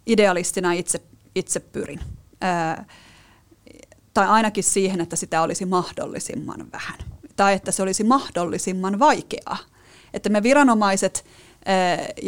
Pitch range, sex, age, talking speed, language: 175-230 Hz, female, 30-49, 110 wpm, Finnish